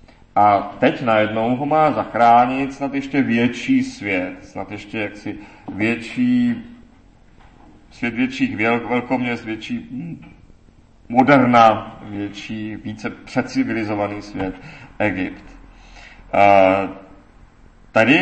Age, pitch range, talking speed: 40-59, 105-140 Hz, 85 wpm